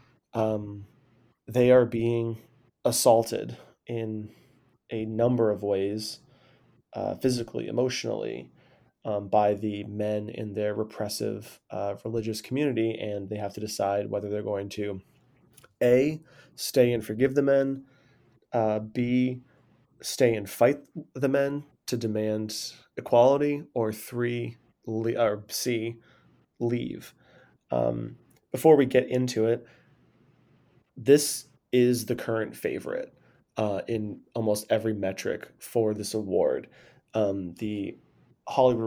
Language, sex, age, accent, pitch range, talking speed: English, male, 30-49, American, 105-125 Hz, 115 wpm